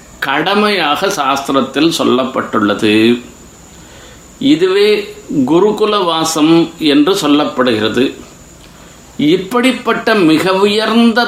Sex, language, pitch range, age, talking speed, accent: male, Tamil, 165-255 Hz, 50-69, 55 wpm, native